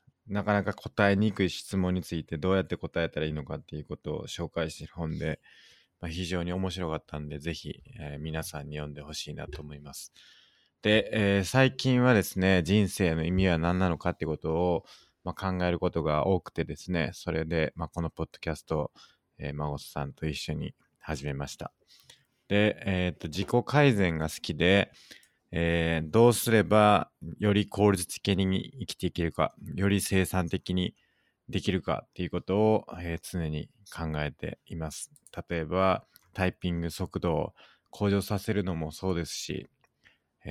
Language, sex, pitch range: Japanese, male, 80-100 Hz